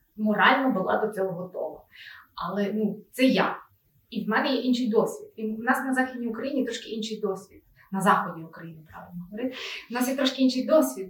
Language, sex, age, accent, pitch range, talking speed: Ukrainian, female, 20-39, native, 200-255 Hz, 185 wpm